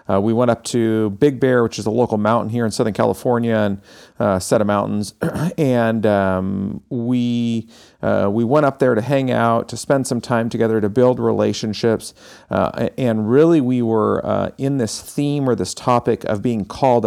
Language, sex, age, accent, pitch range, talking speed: English, male, 40-59, American, 100-120 Hz, 190 wpm